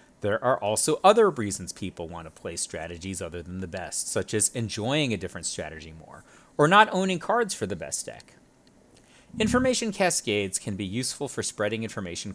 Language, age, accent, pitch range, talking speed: English, 30-49, American, 100-160 Hz, 180 wpm